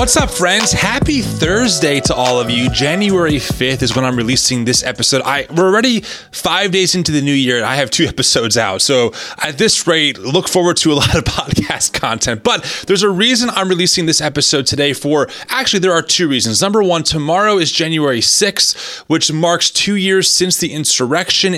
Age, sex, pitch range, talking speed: 30-49, male, 145-205 Hz, 200 wpm